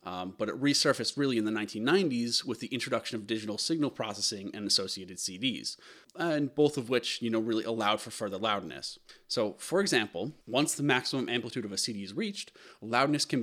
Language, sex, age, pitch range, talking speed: English, male, 30-49, 110-130 Hz, 190 wpm